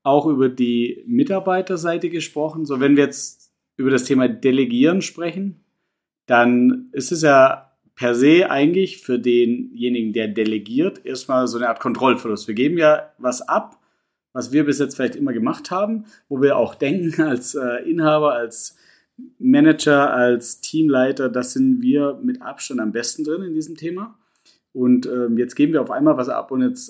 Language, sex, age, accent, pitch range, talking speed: German, male, 30-49, German, 125-170 Hz, 165 wpm